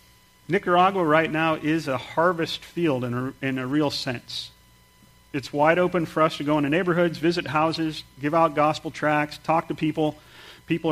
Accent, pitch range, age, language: American, 135-155 Hz, 40-59, English